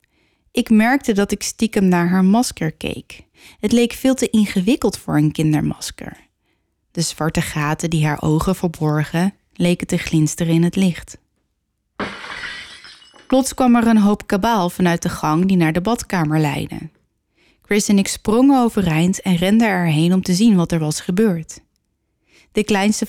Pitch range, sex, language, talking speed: 170-240 Hz, female, Dutch, 160 wpm